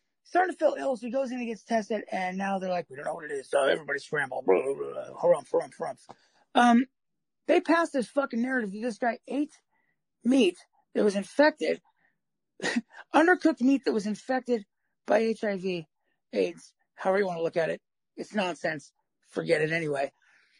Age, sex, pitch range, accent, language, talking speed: 40-59, male, 195-270 Hz, American, English, 170 wpm